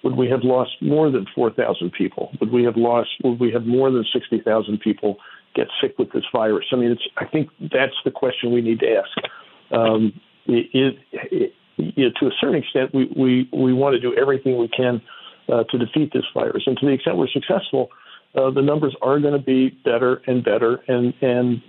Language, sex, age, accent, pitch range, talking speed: English, male, 50-69, American, 120-140 Hz, 215 wpm